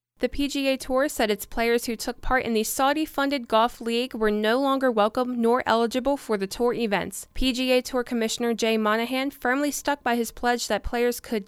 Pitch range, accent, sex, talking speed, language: 210-250 Hz, American, female, 195 wpm, English